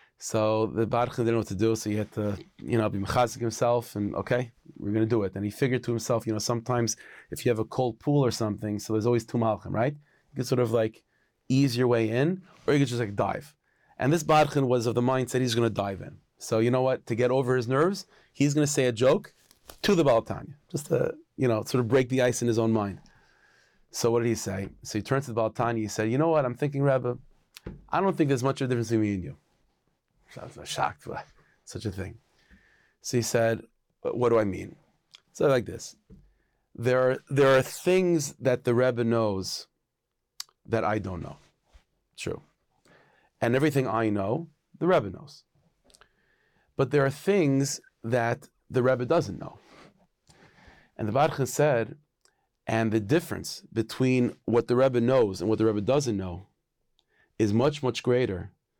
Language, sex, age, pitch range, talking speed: English, male, 30-49, 110-135 Hz, 210 wpm